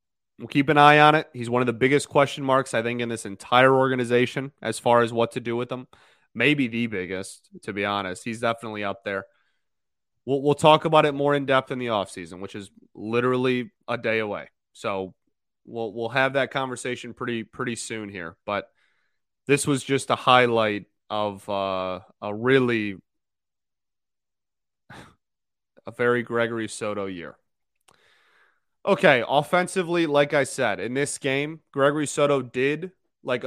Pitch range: 115-145 Hz